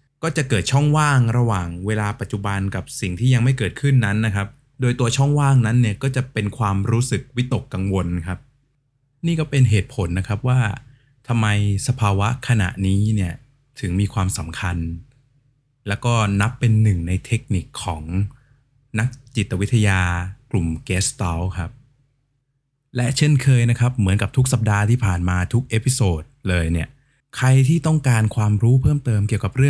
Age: 20-39